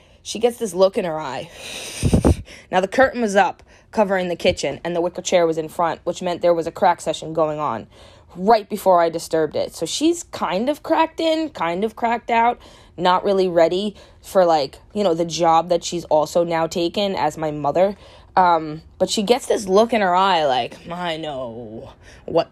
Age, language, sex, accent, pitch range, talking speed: 20-39, English, female, American, 170-225 Hz, 205 wpm